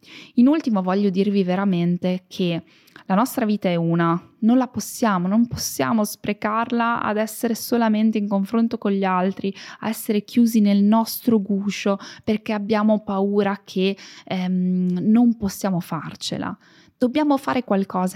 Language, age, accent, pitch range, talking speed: Italian, 20-39, native, 185-230 Hz, 140 wpm